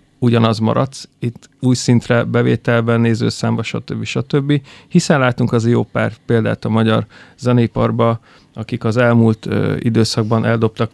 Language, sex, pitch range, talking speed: Hungarian, male, 115-125 Hz, 135 wpm